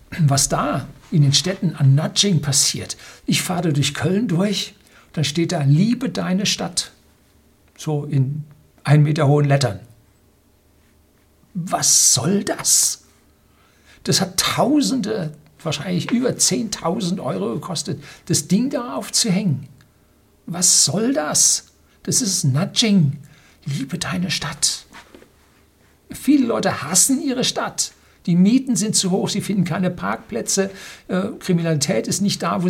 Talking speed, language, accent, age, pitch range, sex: 125 wpm, German, German, 60-79, 130-190 Hz, male